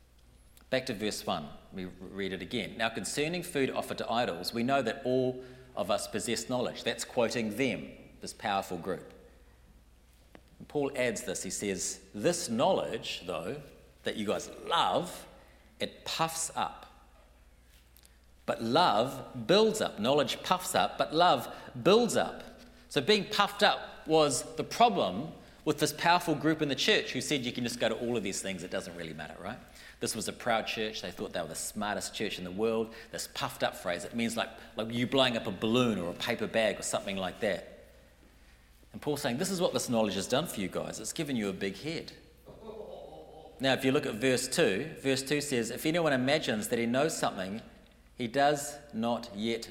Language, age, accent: English, 40-59, Australian